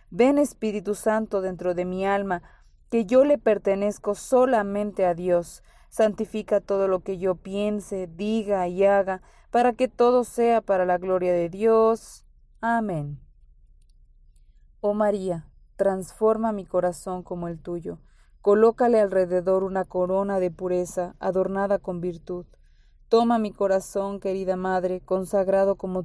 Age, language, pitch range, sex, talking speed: 30-49, Spanish, 180-210 Hz, female, 130 wpm